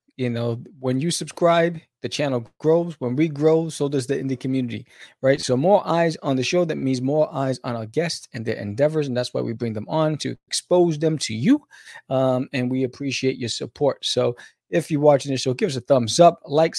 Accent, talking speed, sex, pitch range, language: American, 225 wpm, male, 135-205 Hz, English